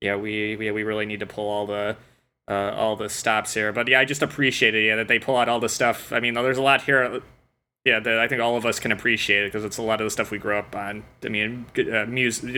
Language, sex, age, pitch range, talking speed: English, male, 20-39, 105-125 Hz, 280 wpm